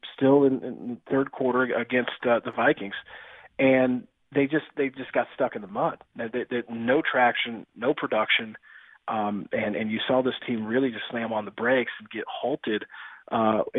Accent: American